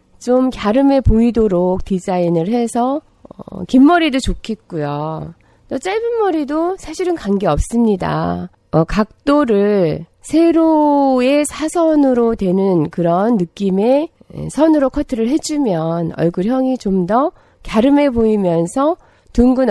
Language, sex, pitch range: Korean, female, 180-270 Hz